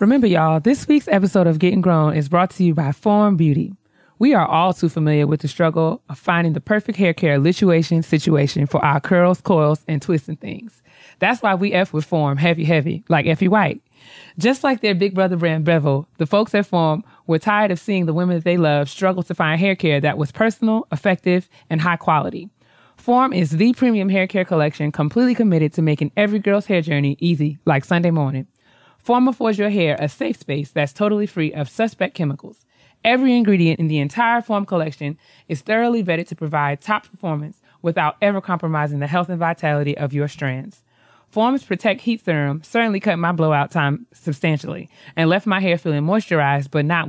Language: English